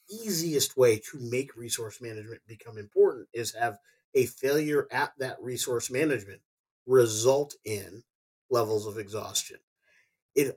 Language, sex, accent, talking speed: English, male, American, 125 wpm